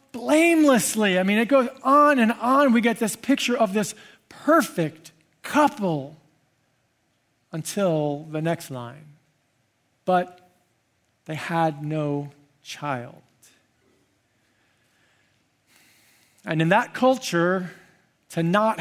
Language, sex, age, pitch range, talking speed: English, male, 40-59, 145-200 Hz, 100 wpm